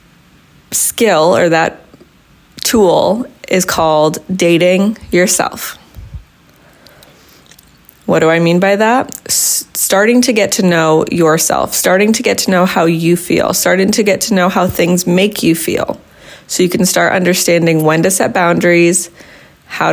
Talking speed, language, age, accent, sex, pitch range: 145 wpm, English, 20-39, American, female, 160-185 Hz